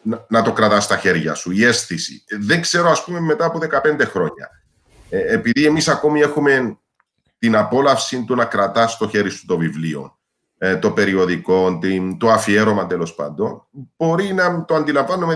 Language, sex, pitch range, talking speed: Greek, male, 105-150 Hz, 170 wpm